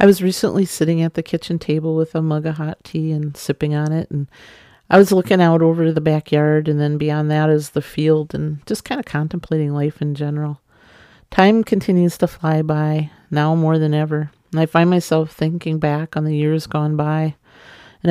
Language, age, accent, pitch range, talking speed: English, 40-59, American, 150-170 Hz, 210 wpm